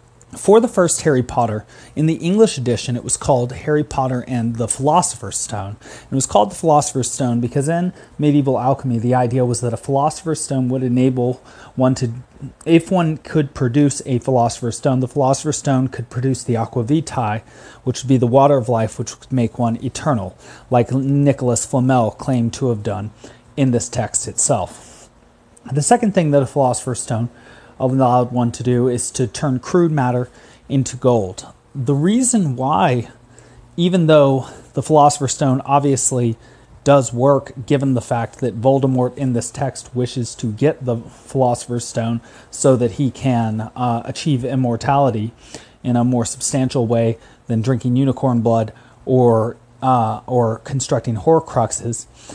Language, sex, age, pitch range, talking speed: English, male, 30-49, 120-140 Hz, 160 wpm